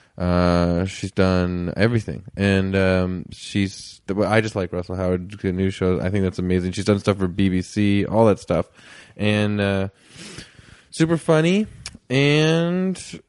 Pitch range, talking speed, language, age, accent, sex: 95-115 Hz, 145 wpm, English, 20-39, American, male